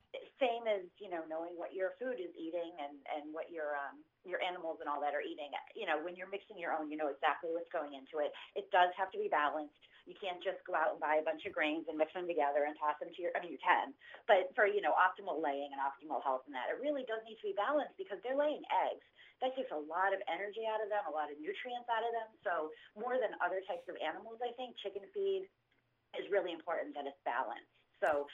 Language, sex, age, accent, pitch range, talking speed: English, female, 30-49, American, 150-210 Hz, 255 wpm